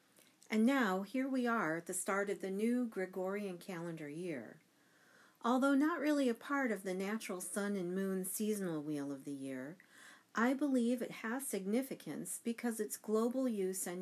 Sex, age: female, 50-69